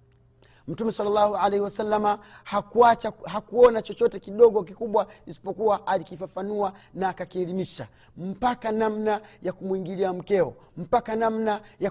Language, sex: Swahili, male